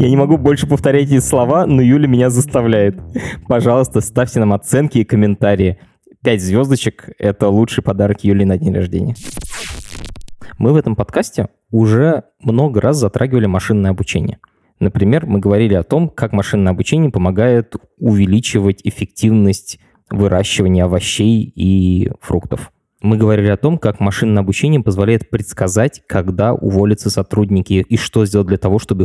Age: 20-39